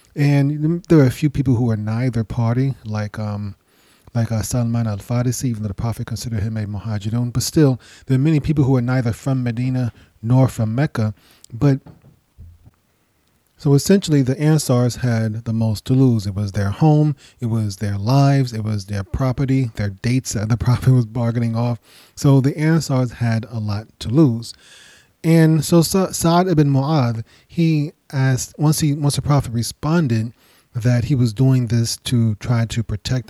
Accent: American